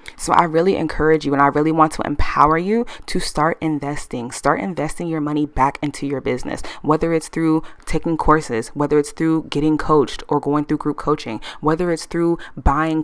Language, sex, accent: English, female, American